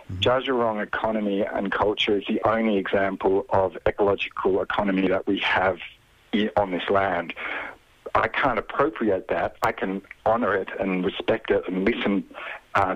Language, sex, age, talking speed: English, male, 60-79, 155 wpm